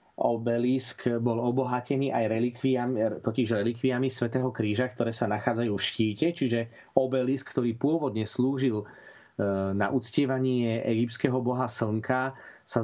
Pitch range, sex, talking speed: 110-130 Hz, male, 110 wpm